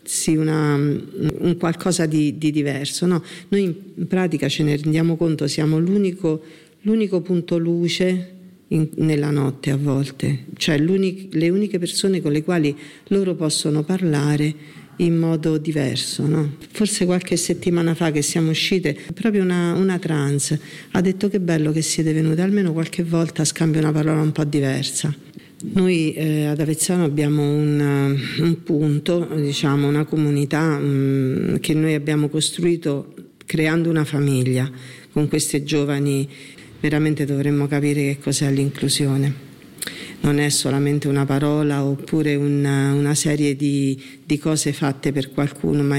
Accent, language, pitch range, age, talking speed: native, Italian, 145-170 Hz, 50-69, 145 wpm